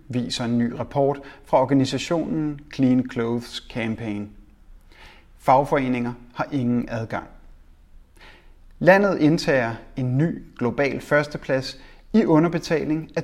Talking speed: 100 wpm